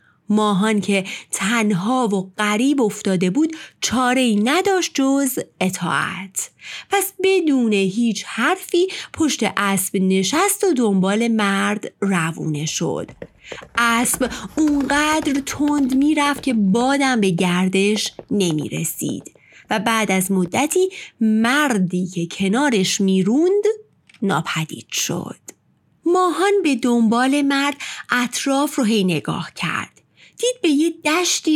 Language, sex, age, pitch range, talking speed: Persian, female, 30-49, 195-310 Hz, 105 wpm